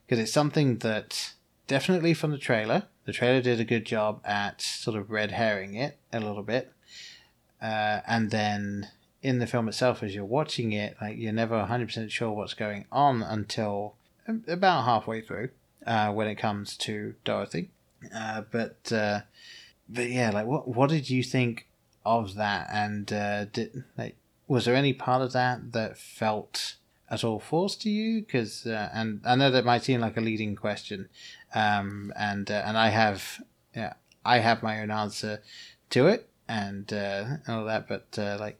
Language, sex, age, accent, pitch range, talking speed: English, male, 20-39, British, 105-125 Hz, 185 wpm